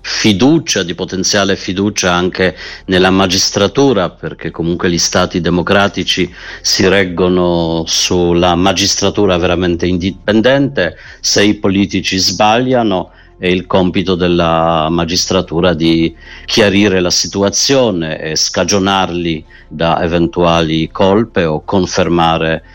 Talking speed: 100 wpm